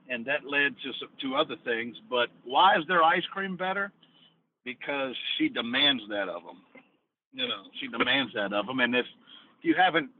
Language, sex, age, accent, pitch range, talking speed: English, male, 60-79, American, 130-215 Hz, 190 wpm